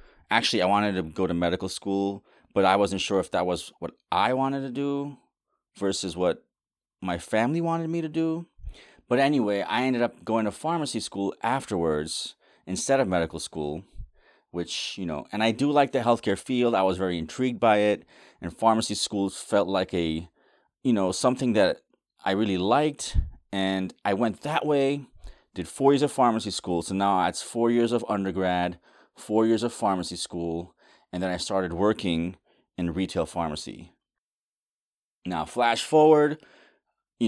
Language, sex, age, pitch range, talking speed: English, male, 30-49, 95-120 Hz, 170 wpm